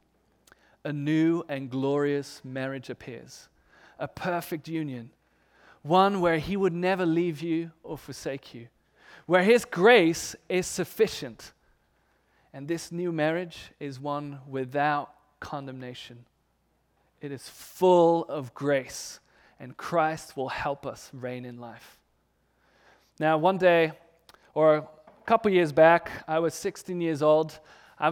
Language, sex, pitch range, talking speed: English, male, 145-185 Hz, 125 wpm